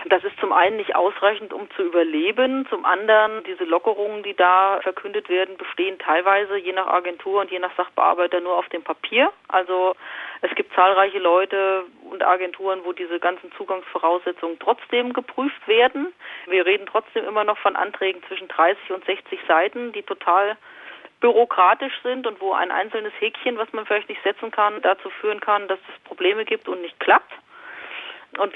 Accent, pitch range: German, 185-245 Hz